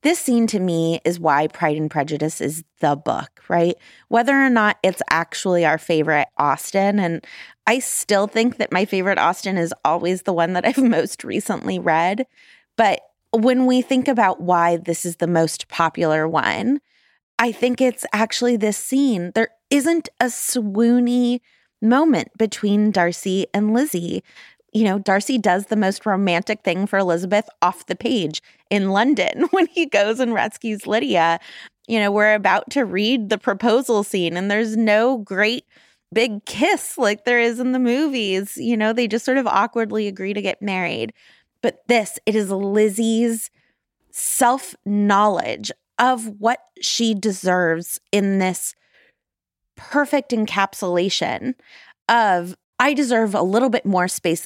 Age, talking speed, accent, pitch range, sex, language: 20-39, 155 wpm, American, 185-245 Hz, female, English